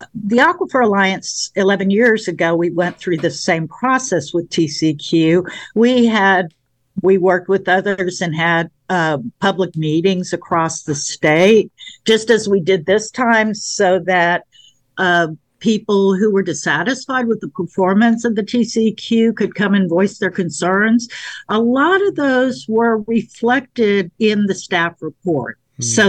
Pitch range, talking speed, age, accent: 170-220 Hz, 145 wpm, 50-69, American